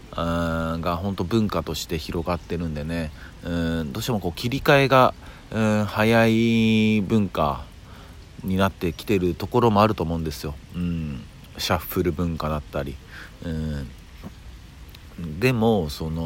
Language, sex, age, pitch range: Japanese, male, 40-59, 80-100 Hz